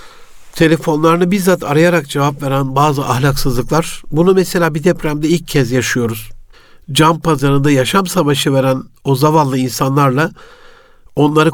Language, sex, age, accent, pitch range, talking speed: Turkish, male, 60-79, native, 140-165 Hz, 120 wpm